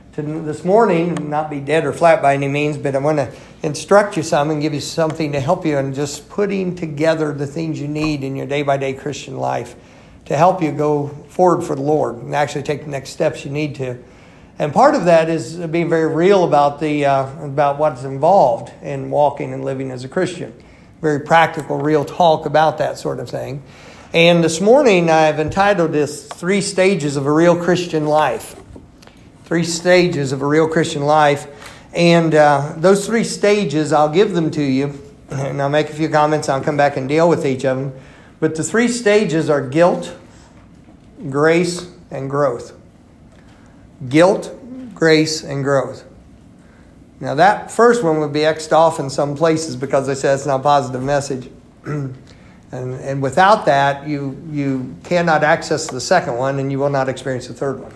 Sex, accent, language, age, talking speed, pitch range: male, American, English, 50-69, 185 wpm, 140-165 Hz